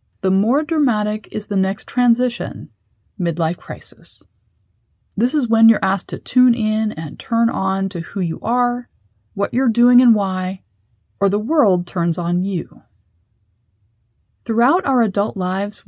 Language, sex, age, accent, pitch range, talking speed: English, female, 30-49, American, 170-225 Hz, 145 wpm